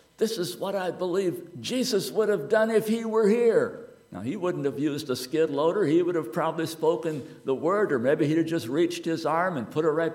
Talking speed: 235 wpm